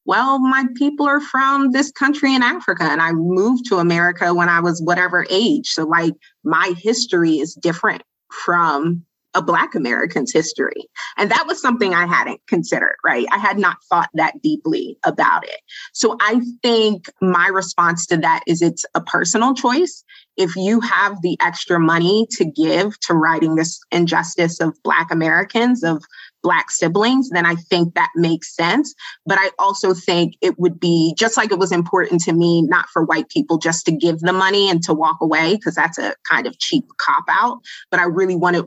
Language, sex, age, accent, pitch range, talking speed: English, female, 30-49, American, 170-235 Hz, 190 wpm